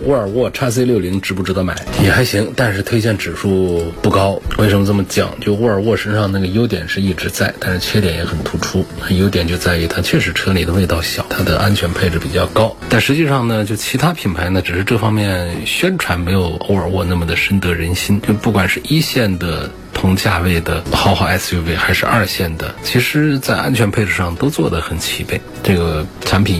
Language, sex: Chinese, male